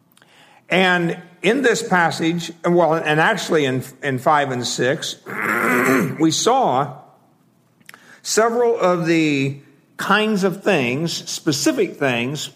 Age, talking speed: 60-79, 110 wpm